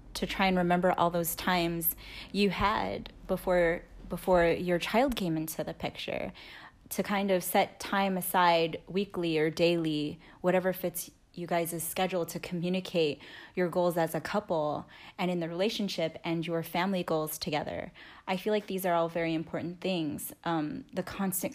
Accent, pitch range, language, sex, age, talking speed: American, 170-190 Hz, English, female, 10-29, 165 wpm